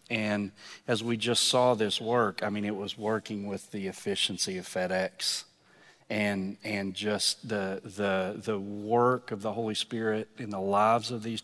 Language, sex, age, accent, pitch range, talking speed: English, male, 40-59, American, 105-120 Hz, 175 wpm